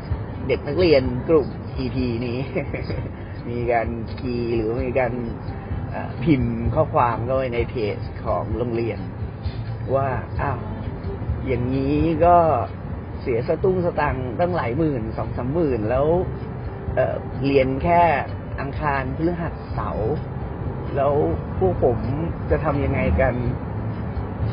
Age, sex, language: 30-49, male, Thai